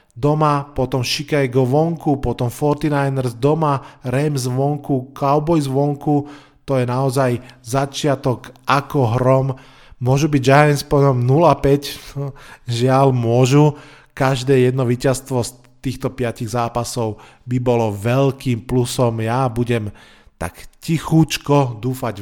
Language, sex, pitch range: Slovak, male, 120-140 Hz